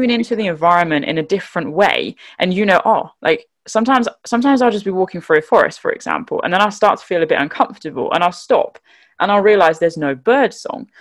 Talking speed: 230 wpm